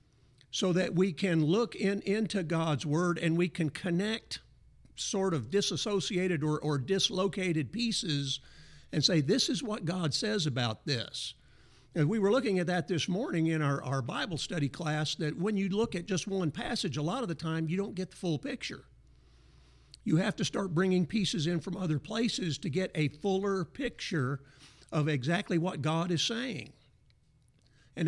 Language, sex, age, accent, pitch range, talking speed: English, male, 50-69, American, 145-190 Hz, 180 wpm